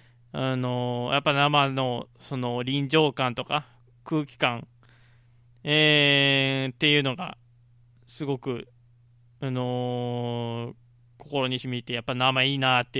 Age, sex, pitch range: 20-39, male, 120-175 Hz